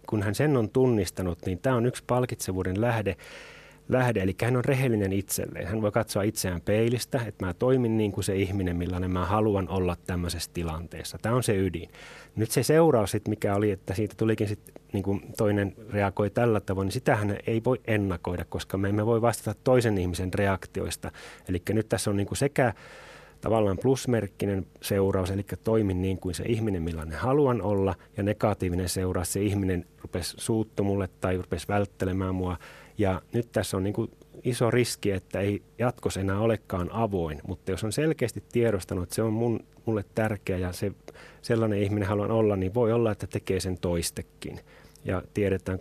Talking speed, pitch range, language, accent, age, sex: 180 wpm, 90-115 Hz, Finnish, native, 30-49, male